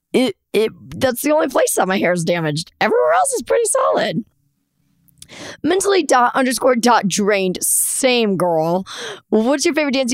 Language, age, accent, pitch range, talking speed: English, 20-39, American, 195-255 Hz, 160 wpm